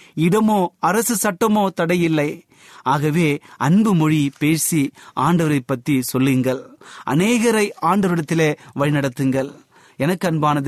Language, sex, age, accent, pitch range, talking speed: Tamil, male, 30-49, native, 150-205 Hz, 85 wpm